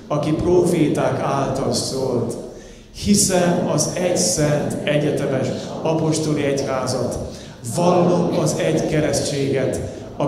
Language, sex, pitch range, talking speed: Hungarian, male, 115-145 Hz, 95 wpm